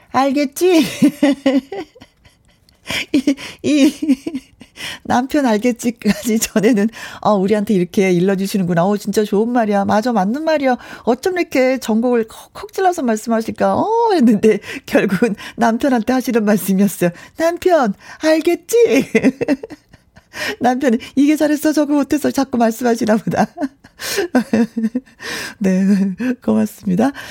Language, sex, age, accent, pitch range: Korean, female, 40-59, native, 205-270 Hz